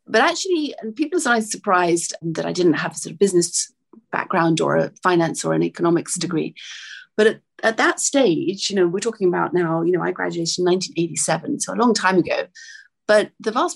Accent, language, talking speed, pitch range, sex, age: British, English, 205 wpm, 160-195 Hz, female, 30-49